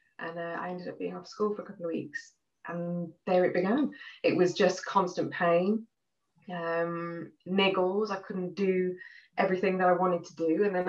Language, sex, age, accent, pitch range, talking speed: English, female, 20-39, British, 160-195 Hz, 195 wpm